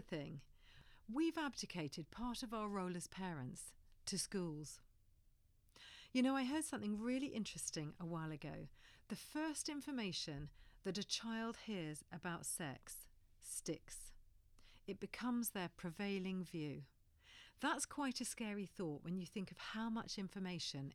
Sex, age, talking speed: female, 40-59, 140 wpm